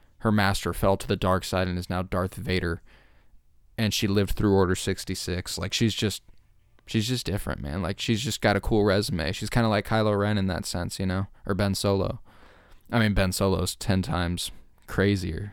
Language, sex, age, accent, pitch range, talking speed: English, male, 20-39, American, 90-105 Hz, 205 wpm